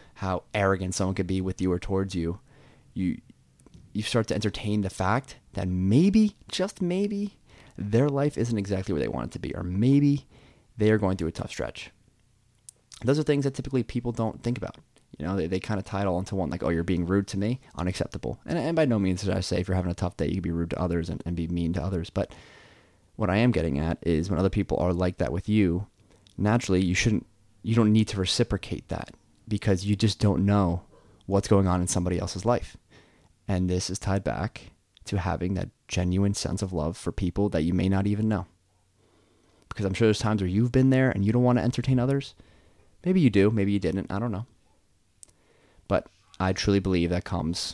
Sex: male